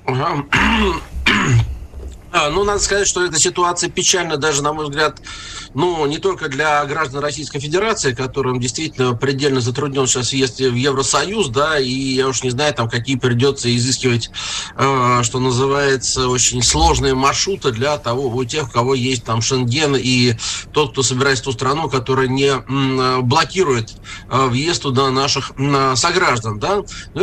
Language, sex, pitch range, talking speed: Russian, male, 130-150 Hz, 150 wpm